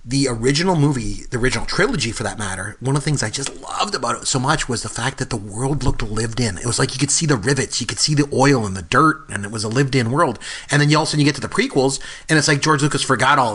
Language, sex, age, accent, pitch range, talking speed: English, male, 30-49, American, 115-140 Hz, 295 wpm